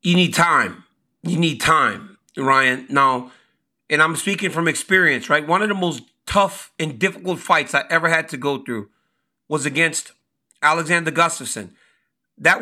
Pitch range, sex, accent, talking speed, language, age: 155-200 Hz, male, American, 155 wpm, English, 40-59